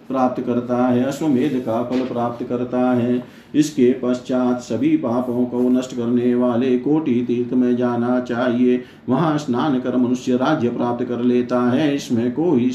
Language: Hindi